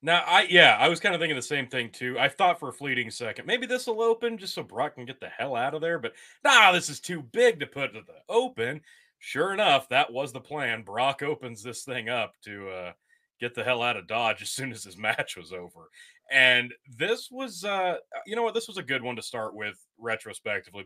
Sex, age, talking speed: male, 30-49, 245 wpm